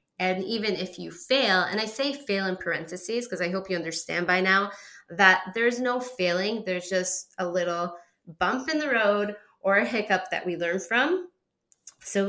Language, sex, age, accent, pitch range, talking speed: English, female, 20-39, American, 180-230 Hz, 185 wpm